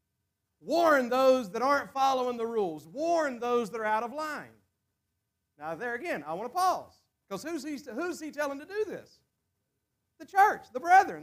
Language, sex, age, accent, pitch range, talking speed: English, male, 40-59, American, 175-265 Hz, 180 wpm